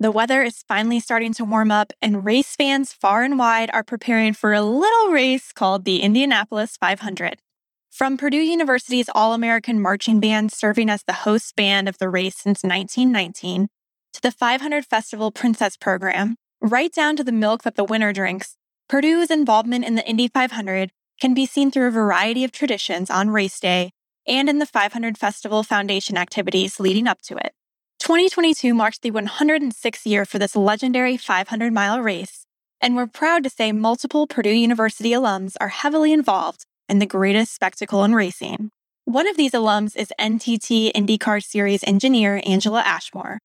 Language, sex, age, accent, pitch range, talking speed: English, female, 10-29, American, 205-250 Hz, 170 wpm